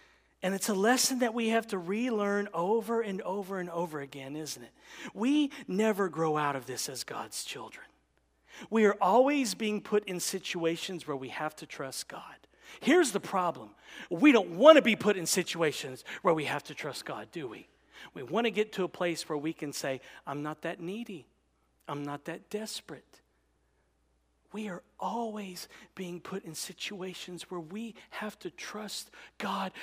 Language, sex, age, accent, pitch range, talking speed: English, male, 40-59, American, 175-280 Hz, 180 wpm